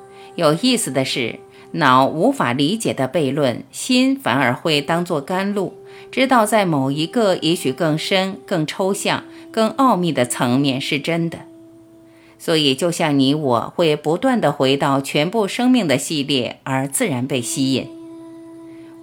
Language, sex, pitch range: Chinese, female, 135-215 Hz